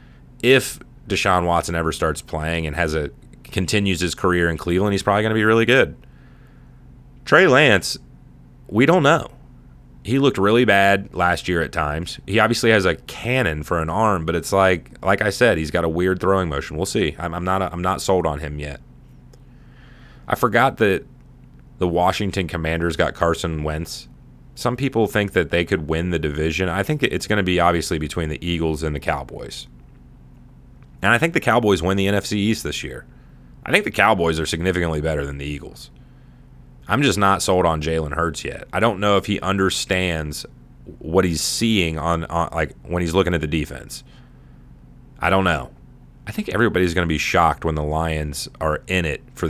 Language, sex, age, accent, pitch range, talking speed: English, male, 30-49, American, 80-95 Hz, 195 wpm